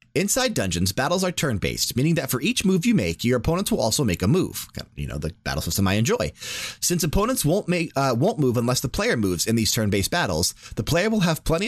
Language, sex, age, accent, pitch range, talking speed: English, male, 30-49, American, 105-150 Hz, 245 wpm